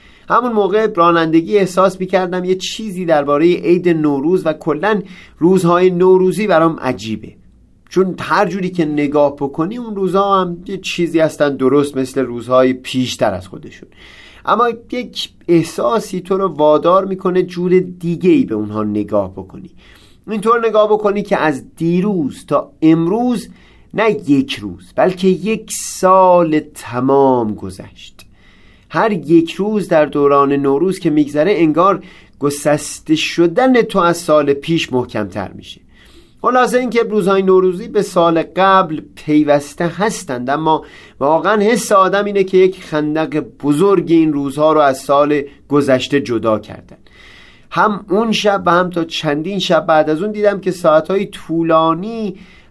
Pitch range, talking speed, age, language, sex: 145-195 Hz, 140 wpm, 30-49, Persian, male